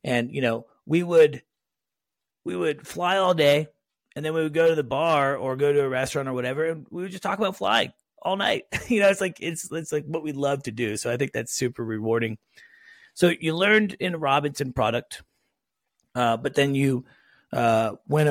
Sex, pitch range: male, 110-150 Hz